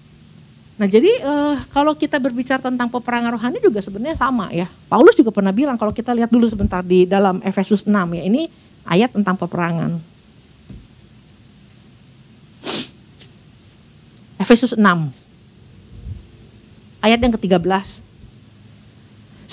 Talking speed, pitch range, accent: 115 wpm, 185-260 Hz, native